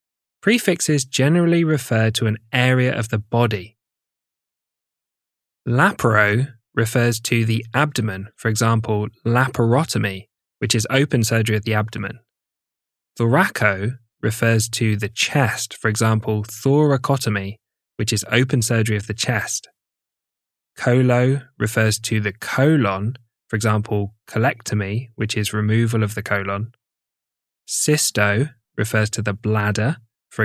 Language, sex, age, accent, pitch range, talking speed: English, male, 10-29, British, 105-125 Hz, 115 wpm